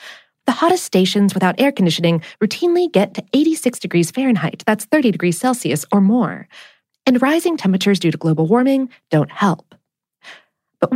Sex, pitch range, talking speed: female, 180-280 Hz, 155 wpm